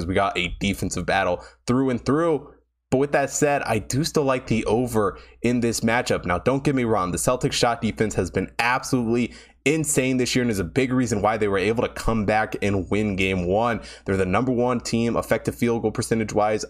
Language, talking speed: English, 225 wpm